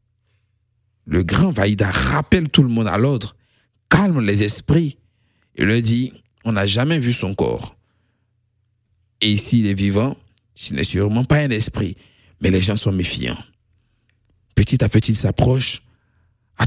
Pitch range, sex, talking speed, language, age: 95-115 Hz, male, 150 wpm, French, 50-69